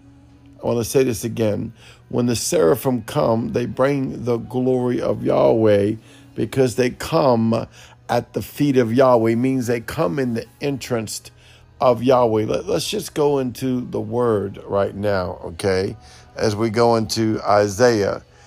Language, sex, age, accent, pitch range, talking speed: English, male, 50-69, American, 115-135 Hz, 155 wpm